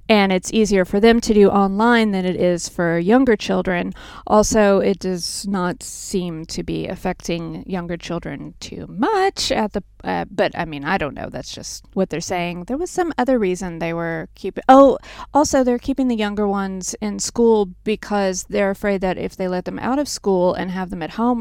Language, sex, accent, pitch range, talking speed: English, female, American, 185-225 Hz, 205 wpm